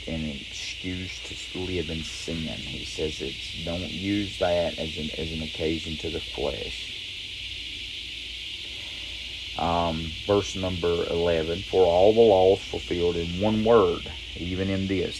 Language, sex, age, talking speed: English, male, 40-59, 140 wpm